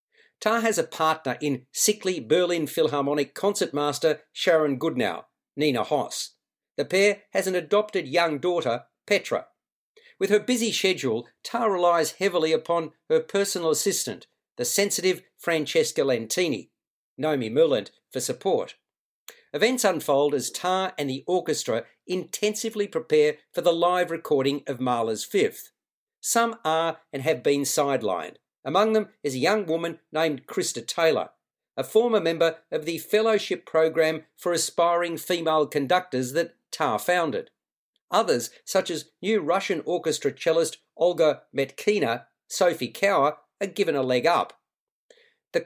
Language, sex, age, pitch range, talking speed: English, male, 50-69, 155-210 Hz, 135 wpm